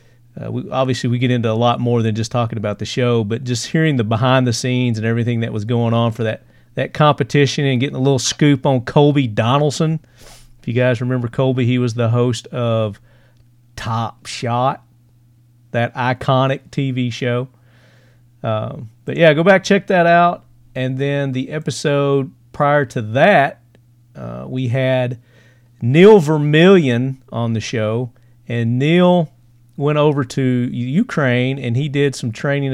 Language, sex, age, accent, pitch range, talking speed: English, male, 40-59, American, 120-135 Hz, 165 wpm